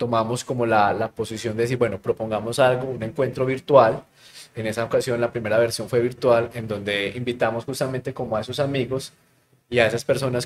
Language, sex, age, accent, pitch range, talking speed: Spanish, male, 20-39, Colombian, 110-125 Hz, 190 wpm